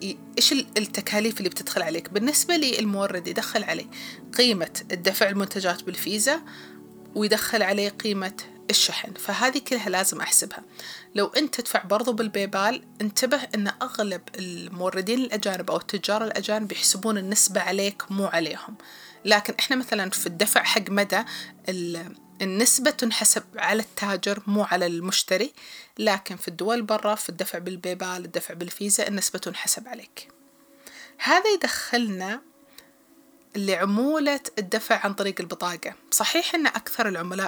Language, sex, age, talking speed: Arabic, female, 30-49, 125 wpm